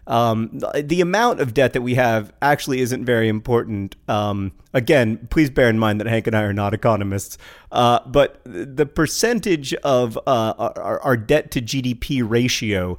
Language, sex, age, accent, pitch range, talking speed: English, male, 40-59, American, 105-130 Hz, 170 wpm